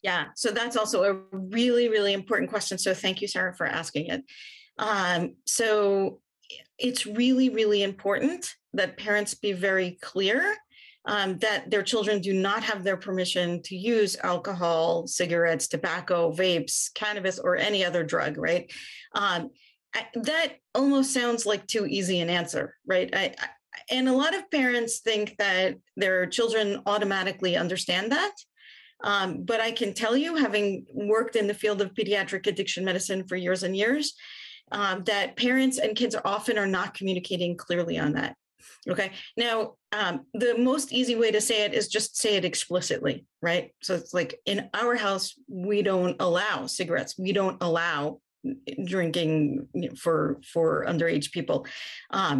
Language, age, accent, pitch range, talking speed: English, 40-59, American, 185-235 Hz, 155 wpm